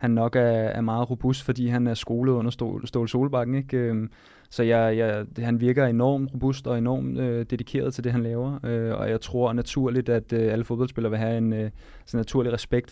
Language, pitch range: Danish, 110-125 Hz